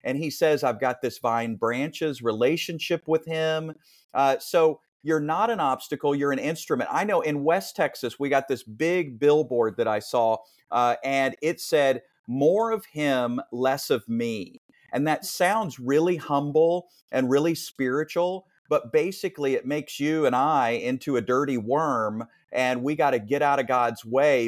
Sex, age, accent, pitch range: male, 40-59, American, 125-165 Hz